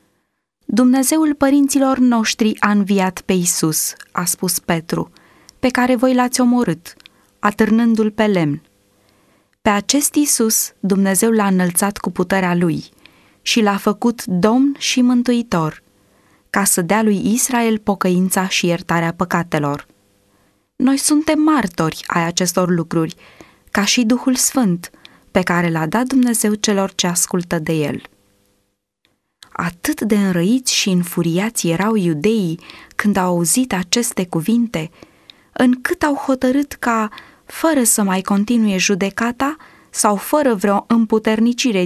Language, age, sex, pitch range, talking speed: Romanian, 20-39, female, 170-240 Hz, 125 wpm